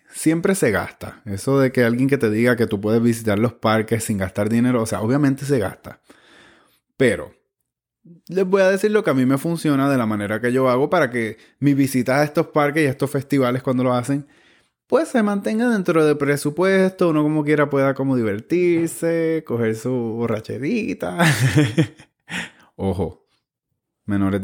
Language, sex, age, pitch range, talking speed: Spanish, male, 20-39, 115-150 Hz, 180 wpm